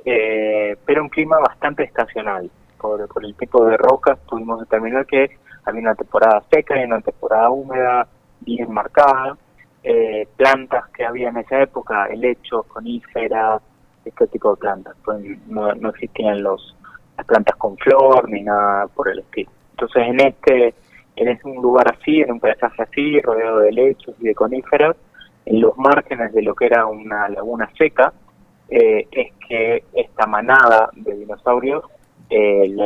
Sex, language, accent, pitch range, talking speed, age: male, Spanish, Argentinian, 110-145 Hz, 155 wpm, 20-39